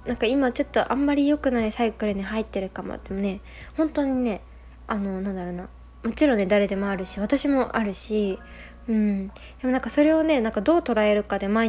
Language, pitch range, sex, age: Japanese, 195-250 Hz, female, 20-39